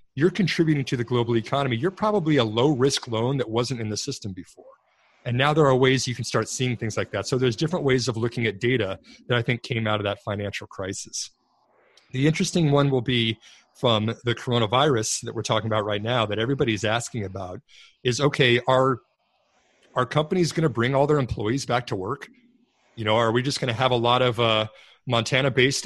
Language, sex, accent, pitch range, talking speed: English, male, American, 110-135 Hz, 215 wpm